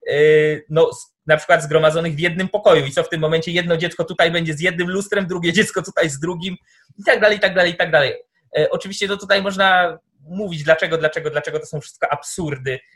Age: 20-39